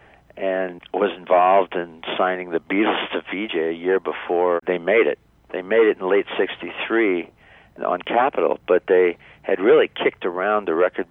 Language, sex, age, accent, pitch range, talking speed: English, male, 50-69, American, 85-115 Hz, 165 wpm